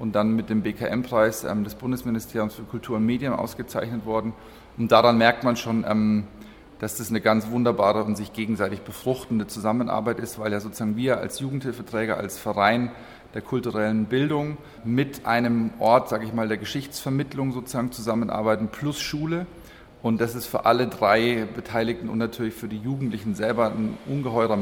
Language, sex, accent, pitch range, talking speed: German, male, German, 110-125 Hz, 165 wpm